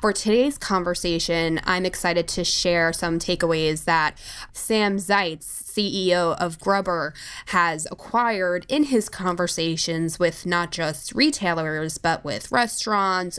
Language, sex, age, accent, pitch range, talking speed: English, female, 20-39, American, 165-195 Hz, 120 wpm